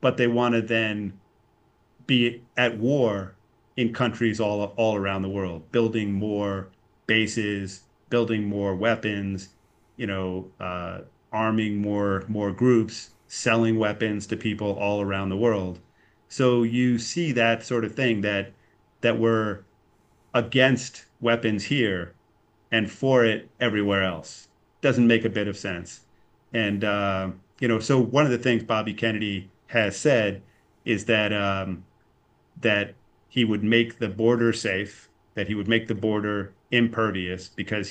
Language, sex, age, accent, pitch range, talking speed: English, male, 30-49, American, 95-115 Hz, 145 wpm